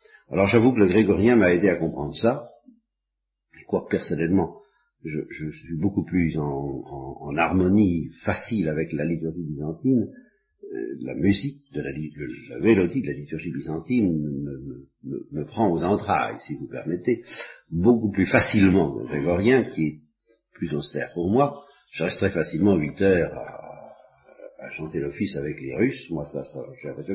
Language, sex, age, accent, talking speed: French, male, 50-69, French, 165 wpm